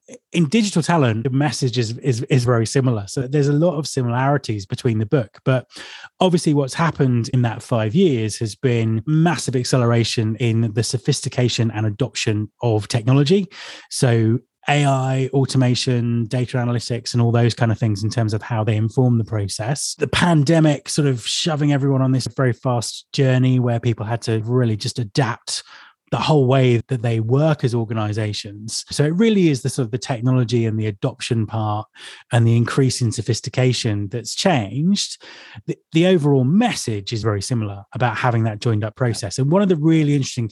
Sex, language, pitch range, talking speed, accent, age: male, English, 115-140 Hz, 180 wpm, British, 20-39